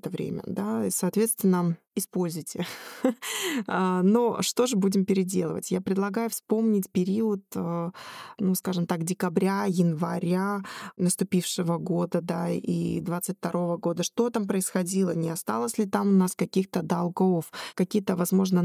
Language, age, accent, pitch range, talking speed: Russian, 20-39, native, 180-210 Hz, 125 wpm